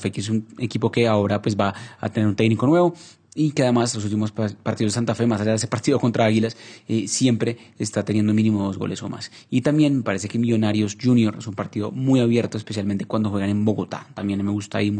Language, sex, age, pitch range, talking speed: Spanish, male, 30-49, 105-120 Hz, 225 wpm